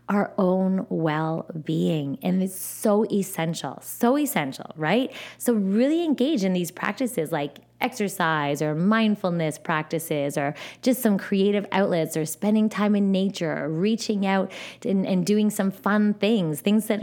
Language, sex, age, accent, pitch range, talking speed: English, female, 20-39, American, 170-225 Hz, 150 wpm